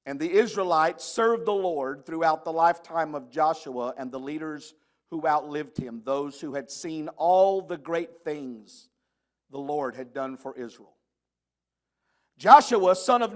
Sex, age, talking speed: male, 50-69, 155 wpm